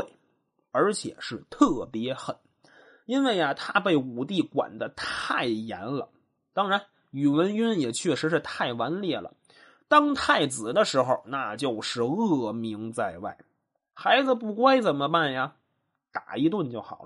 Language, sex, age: Chinese, male, 20-39